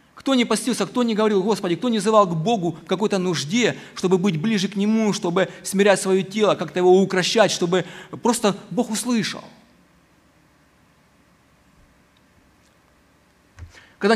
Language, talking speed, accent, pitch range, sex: Ukrainian, 135 wpm, native, 185-225 Hz, male